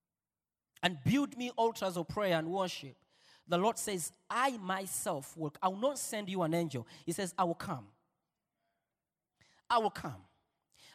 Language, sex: Swedish, male